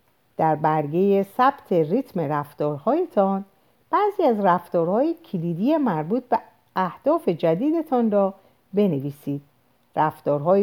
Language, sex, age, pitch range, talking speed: Persian, female, 50-69, 155-235 Hz, 90 wpm